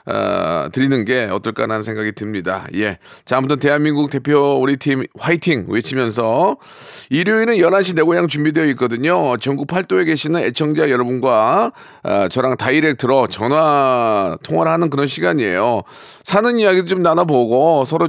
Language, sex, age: Korean, male, 40-59